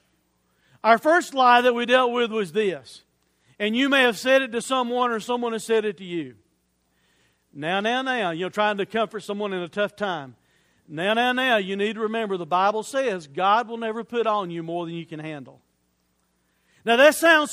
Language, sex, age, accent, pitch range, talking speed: English, male, 50-69, American, 205-280 Hz, 205 wpm